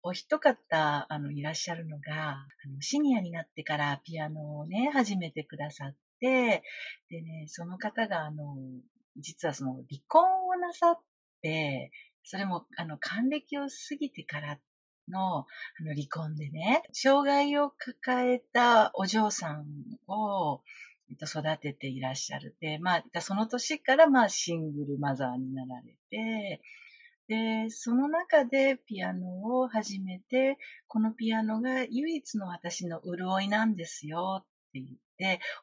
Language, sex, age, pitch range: Japanese, female, 50-69, 155-250 Hz